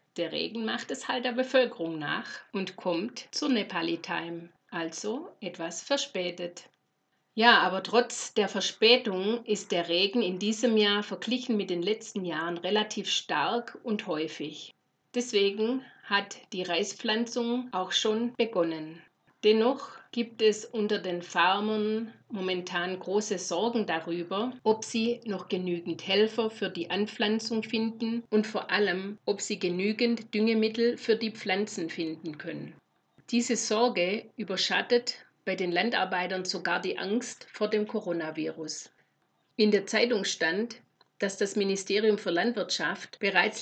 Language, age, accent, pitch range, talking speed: German, 50-69, German, 180-225 Hz, 130 wpm